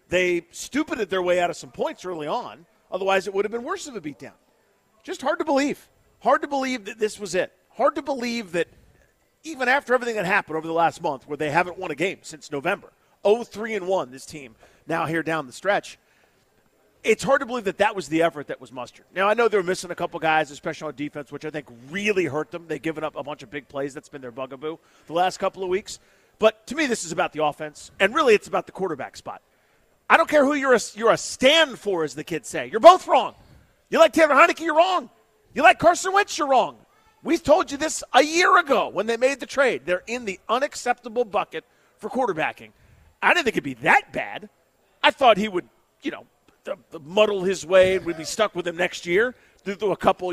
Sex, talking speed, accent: male, 235 wpm, American